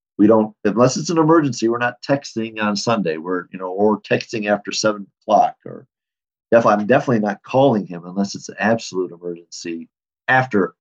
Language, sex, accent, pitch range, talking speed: English, male, American, 100-120 Hz, 180 wpm